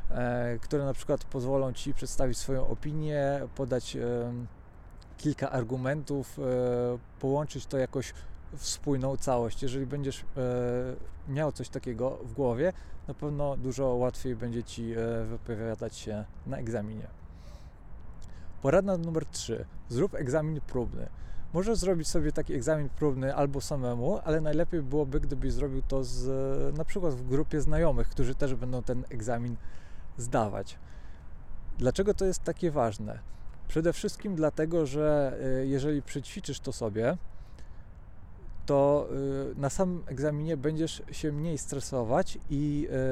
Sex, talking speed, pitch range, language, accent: male, 120 wpm, 120-150 Hz, Polish, native